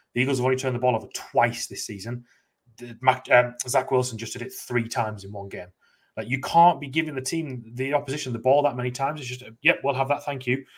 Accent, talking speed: British, 245 wpm